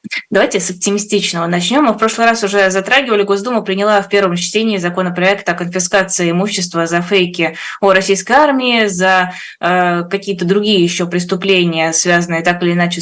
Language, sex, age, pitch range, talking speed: Russian, female, 20-39, 170-200 Hz, 155 wpm